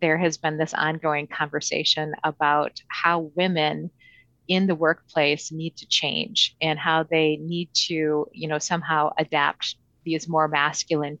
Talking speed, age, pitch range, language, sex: 145 wpm, 30-49, 150-170 Hz, English, female